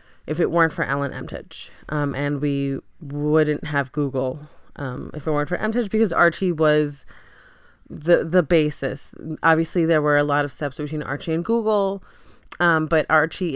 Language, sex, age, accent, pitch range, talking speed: English, female, 20-39, American, 145-185 Hz, 170 wpm